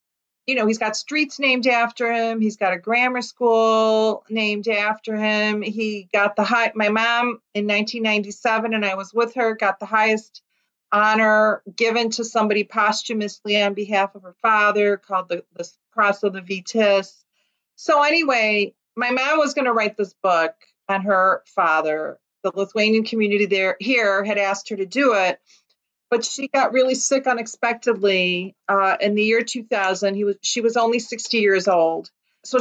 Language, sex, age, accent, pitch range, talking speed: English, female, 40-59, American, 200-235 Hz, 165 wpm